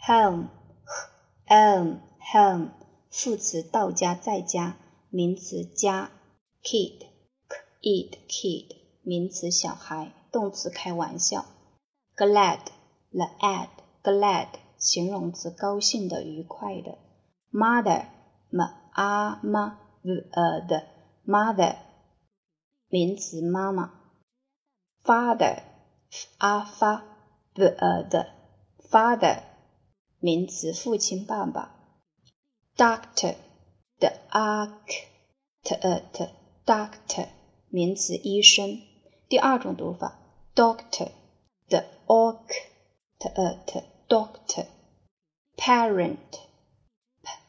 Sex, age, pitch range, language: female, 20-39, 175-220 Hz, Chinese